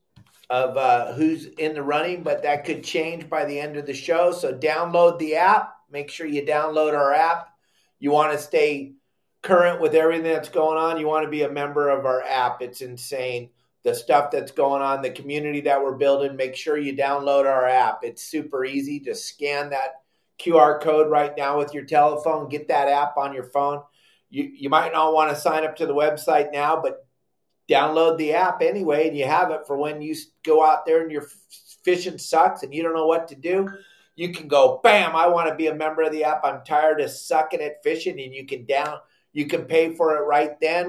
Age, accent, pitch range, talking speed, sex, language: 40-59, American, 145-170 Hz, 220 wpm, male, English